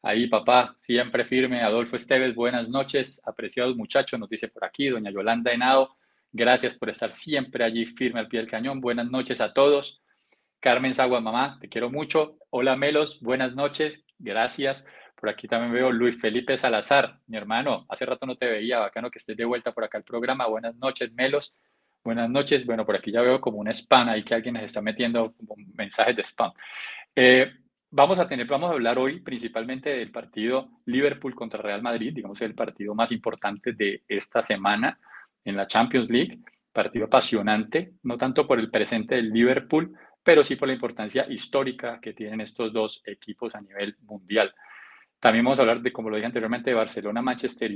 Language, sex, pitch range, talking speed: Spanish, male, 115-135 Hz, 185 wpm